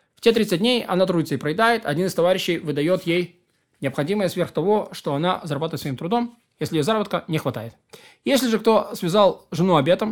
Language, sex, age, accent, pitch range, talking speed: Russian, male, 20-39, native, 155-225 Hz, 185 wpm